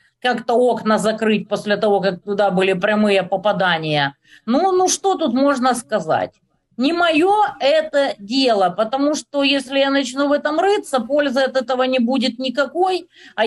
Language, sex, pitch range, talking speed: Russian, female, 210-285 Hz, 155 wpm